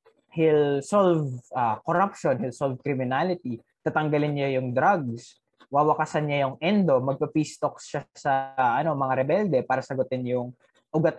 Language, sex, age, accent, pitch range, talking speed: Filipino, male, 20-39, native, 135-180 Hz, 145 wpm